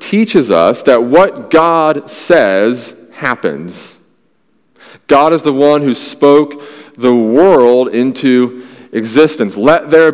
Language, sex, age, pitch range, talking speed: English, male, 40-59, 125-165 Hz, 110 wpm